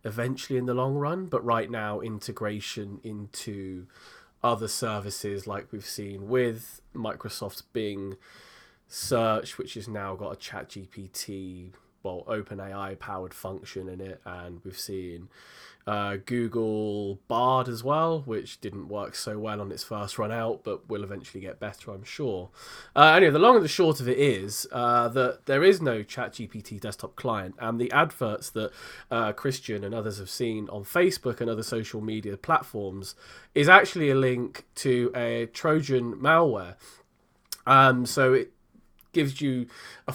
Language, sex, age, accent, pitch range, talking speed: English, male, 20-39, British, 105-130 Hz, 160 wpm